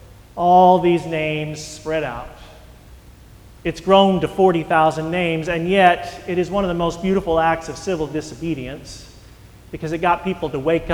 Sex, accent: male, American